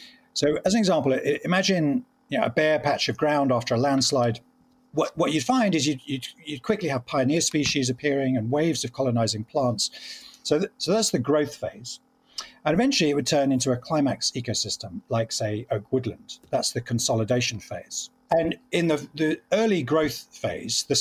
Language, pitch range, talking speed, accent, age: English, 120-160 Hz, 185 wpm, British, 50-69